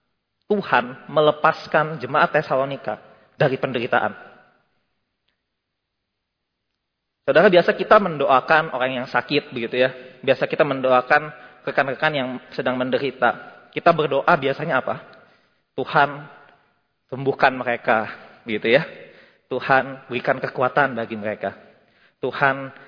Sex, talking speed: male, 95 wpm